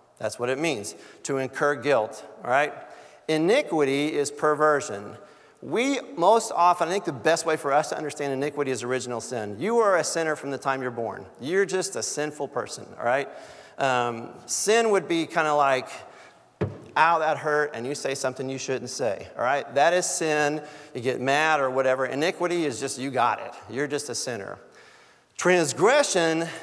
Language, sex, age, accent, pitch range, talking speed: English, male, 50-69, American, 130-175 Hz, 185 wpm